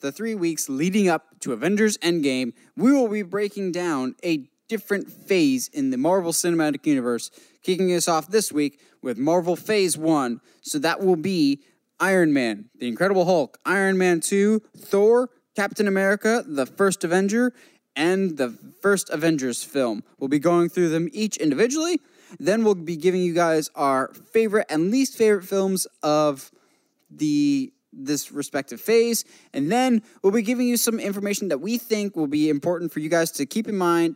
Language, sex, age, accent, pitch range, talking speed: English, male, 10-29, American, 150-220 Hz, 170 wpm